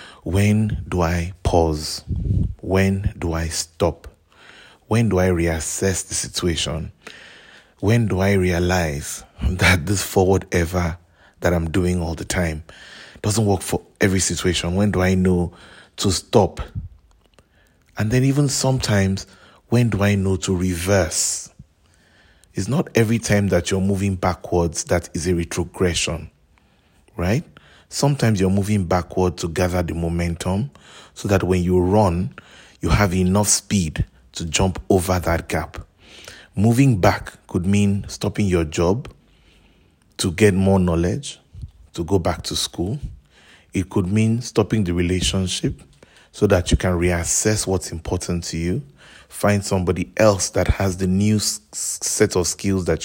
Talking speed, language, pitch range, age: 145 wpm, English, 85-100 Hz, 30-49